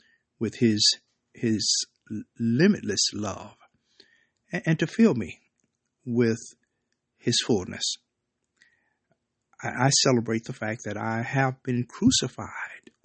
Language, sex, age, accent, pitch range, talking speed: English, male, 60-79, American, 115-140 Hz, 95 wpm